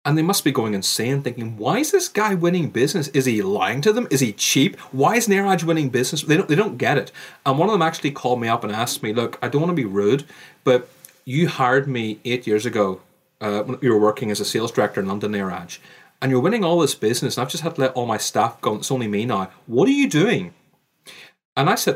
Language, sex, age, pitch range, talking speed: English, male, 30-49, 125-175 Hz, 265 wpm